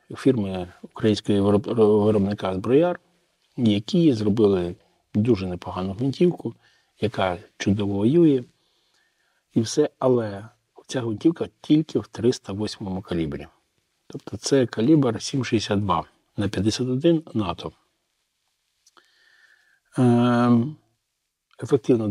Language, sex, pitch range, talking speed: Ukrainian, male, 100-125 Hz, 80 wpm